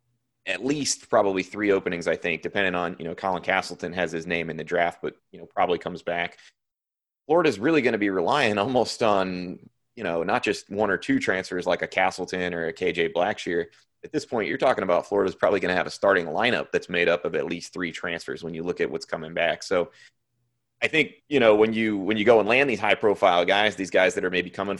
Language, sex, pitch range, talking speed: English, male, 90-110 Hz, 235 wpm